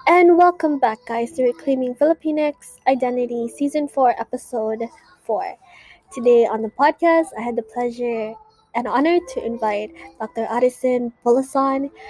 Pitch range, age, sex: 235-295 Hz, 20-39, female